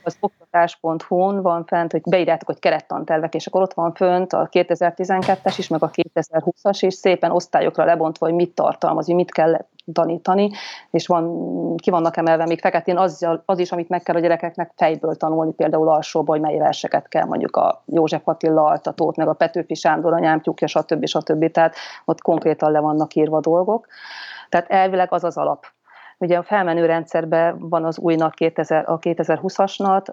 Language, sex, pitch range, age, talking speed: Hungarian, female, 160-180 Hz, 30-49, 175 wpm